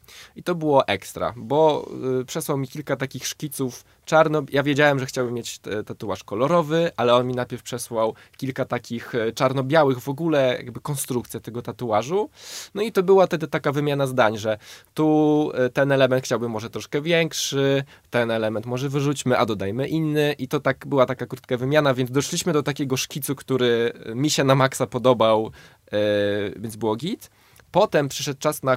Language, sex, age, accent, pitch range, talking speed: Polish, male, 20-39, native, 125-150 Hz, 165 wpm